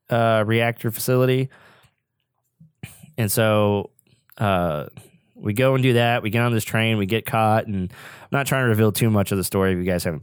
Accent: American